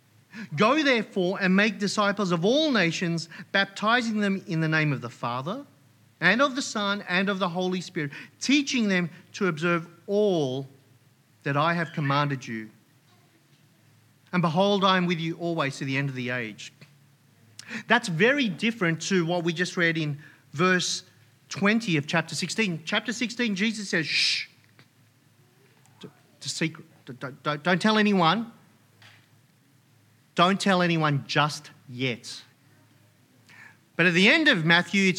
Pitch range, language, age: 135-210 Hz, English, 40-59